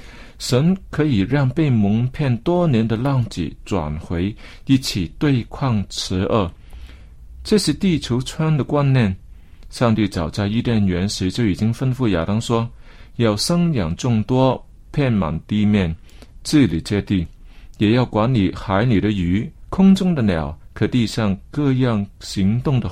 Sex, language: male, Chinese